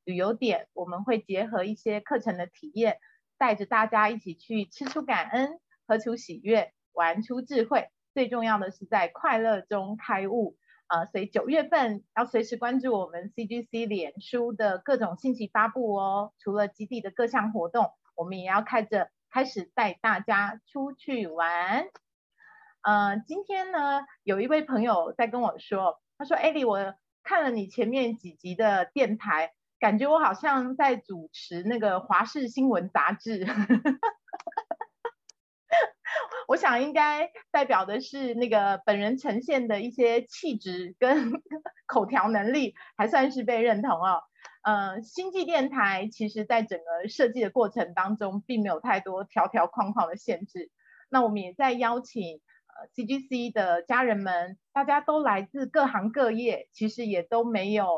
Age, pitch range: 30-49, 205-260 Hz